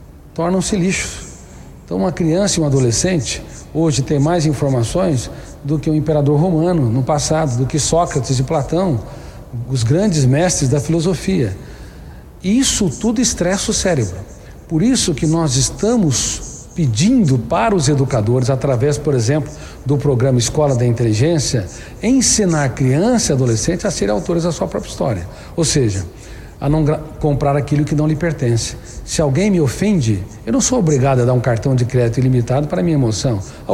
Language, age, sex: Portuguese, 60-79, male